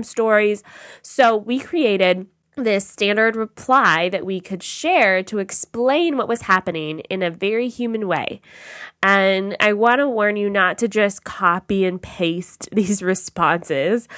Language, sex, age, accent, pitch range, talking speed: English, female, 20-39, American, 175-225 Hz, 150 wpm